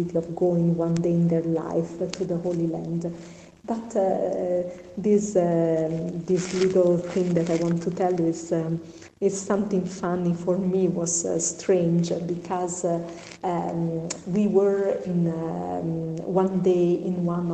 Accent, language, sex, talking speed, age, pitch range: Italian, English, female, 145 wpm, 40-59, 170-190 Hz